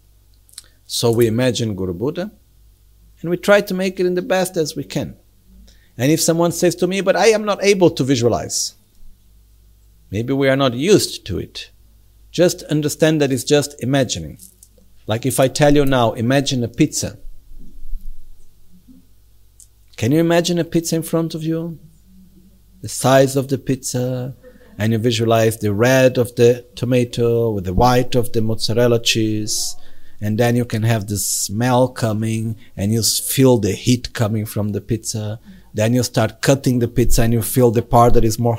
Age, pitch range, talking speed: 50-69, 105-135 Hz, 175 wpm